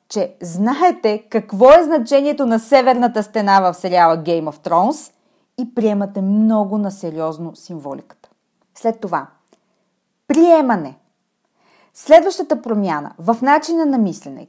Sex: female